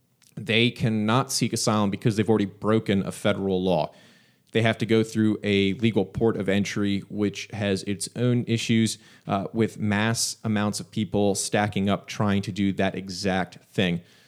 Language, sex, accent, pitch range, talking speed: English, male, American, 100-120 Hz, 170 wpm